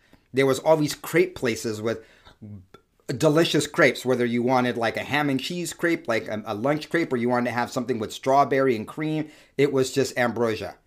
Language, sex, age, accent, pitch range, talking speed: English, male, 30-49, American, 115-150 Hz, 205 wpm